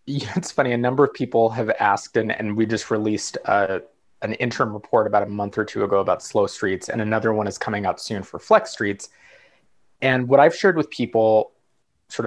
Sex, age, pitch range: male, 20-39, 110-140 Hz